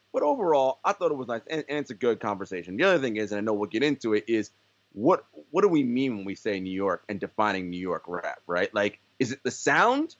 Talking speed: 270 wpm